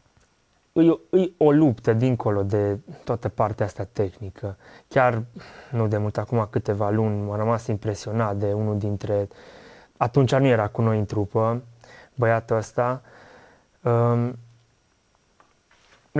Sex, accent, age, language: male, native, 20-39, Romanian